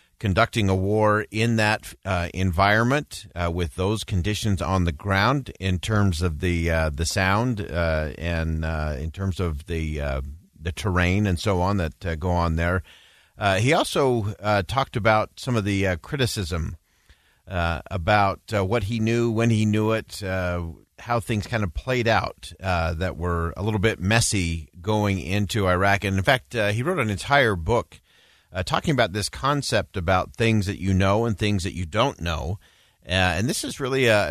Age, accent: 40-59, American